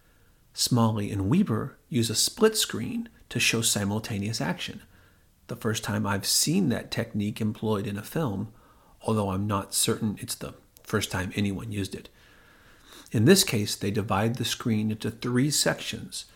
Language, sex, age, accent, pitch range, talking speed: English, male, 40-59, American, 100-115 Hz, 160 wpm